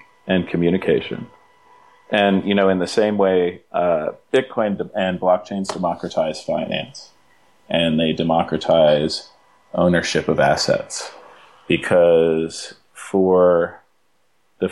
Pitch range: 85-95 Hz